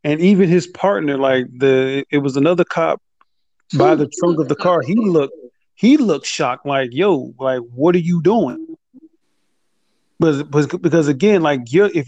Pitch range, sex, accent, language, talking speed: 135-170 Hz, male, American, English, 175 wpm